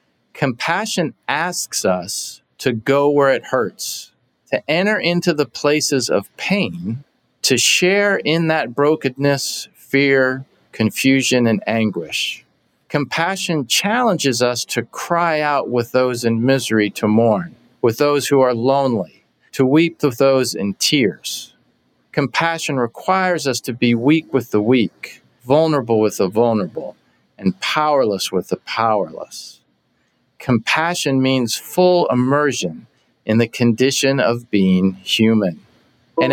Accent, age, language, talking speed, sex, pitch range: American, 40-59, English, 125 wpm, male, 125-170 Hz